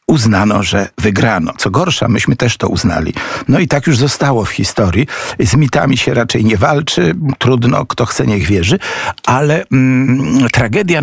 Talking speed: 160 wpm